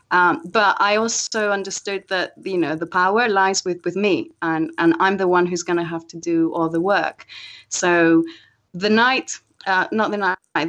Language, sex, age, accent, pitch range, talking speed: English, female, 30-49, British, 180-245 Hz, 195 wpm